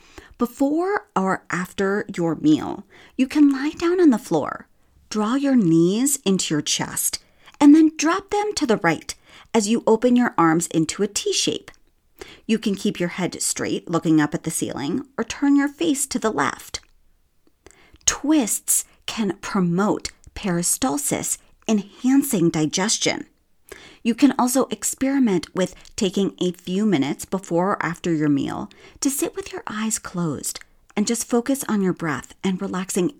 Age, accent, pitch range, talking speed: 40-59, American, 170-260 Hz, 155 wpm